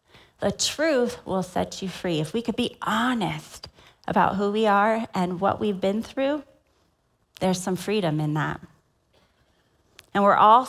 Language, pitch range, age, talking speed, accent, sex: English, 180-235 Hz, 30-49, 155 wpm, American, female